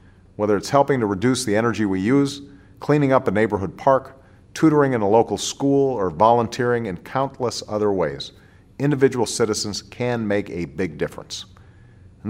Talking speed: 160 wpm